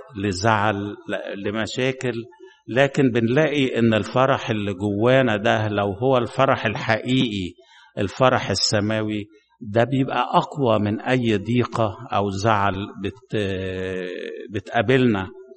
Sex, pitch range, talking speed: male, 105-130 Hz, 95 wpm